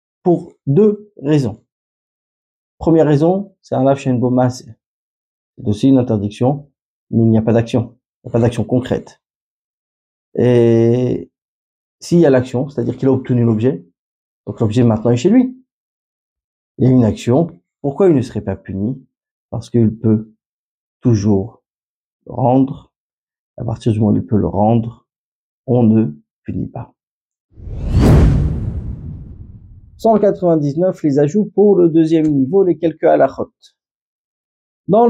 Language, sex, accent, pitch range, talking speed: French, male, French, 115-155 Hz, 140 wpm